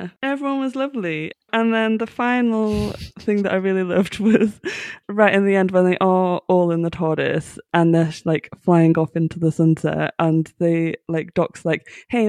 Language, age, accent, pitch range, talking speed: English, 20-39, British, 155-190 Hz, 185 wpm